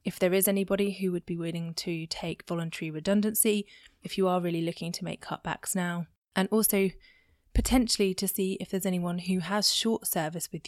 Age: 20-39